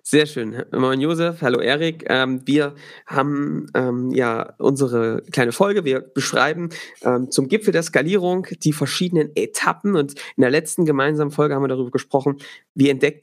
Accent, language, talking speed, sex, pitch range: German, German, 150 wpm, male, 130-160 Hz